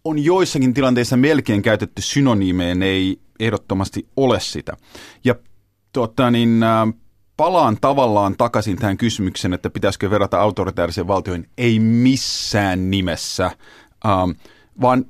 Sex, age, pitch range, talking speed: male, 30-49, 105-135 Hz, 100 wpm